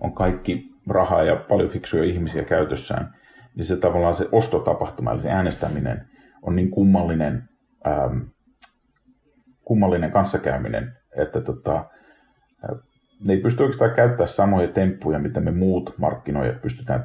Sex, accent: male, native